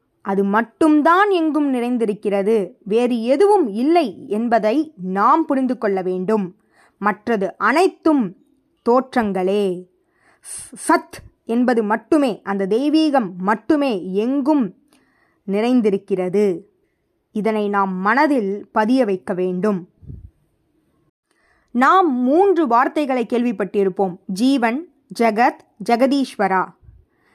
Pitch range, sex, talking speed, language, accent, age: 200-290 Hz, female, 80 wpm, Tamil, native, 20-39